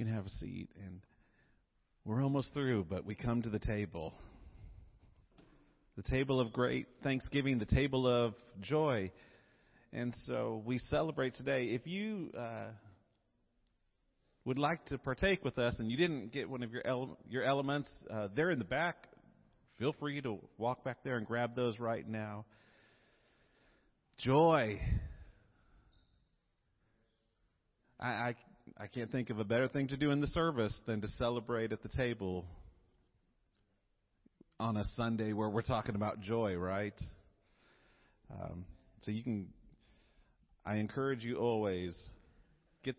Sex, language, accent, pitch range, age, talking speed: male, English, American, 100-125 Hz, 40-59, 140 wpm